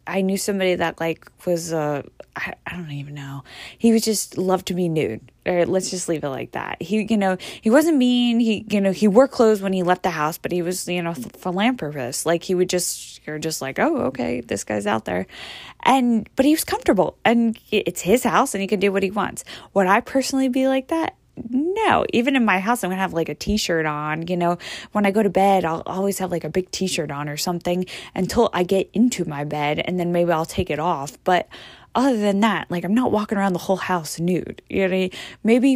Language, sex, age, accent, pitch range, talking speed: English, female, 20-39, American, 170-210 Hz, 240 wpm